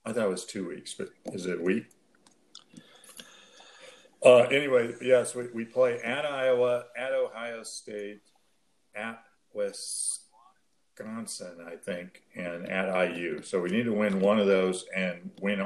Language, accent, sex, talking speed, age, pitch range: English, American, male, 150 wpm, 50-69, 95-115 Hz